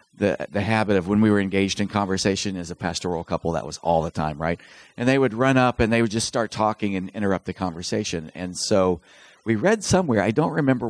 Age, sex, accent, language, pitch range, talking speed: 50-69, male, American, English, 95-120 Hz, 235 wpm